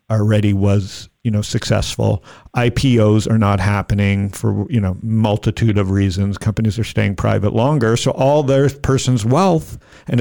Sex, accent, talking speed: male, American, 155 wpm